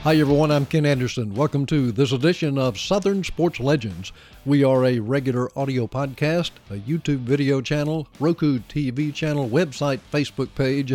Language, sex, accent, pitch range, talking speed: English, male, American, 120-145 Hz, 160 wpm